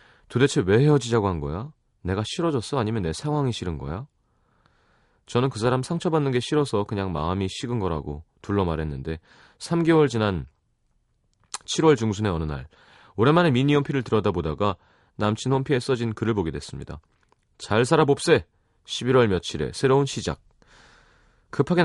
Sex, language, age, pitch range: male, Korean, 30-49, 90-135 Hz